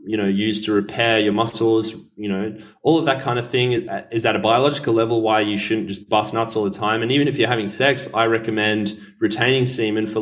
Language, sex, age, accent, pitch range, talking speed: English, male, 20-39, Australian, 105-120 Hz, 235 wpm